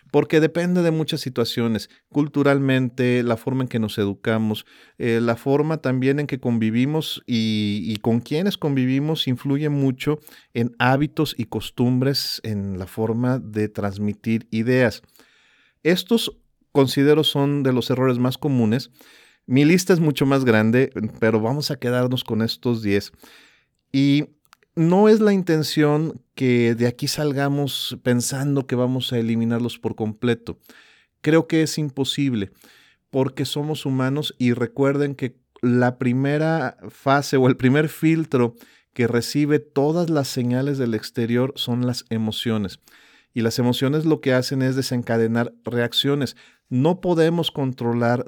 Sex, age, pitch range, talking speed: male, 40-59, 115-145 Hz, 140 wpm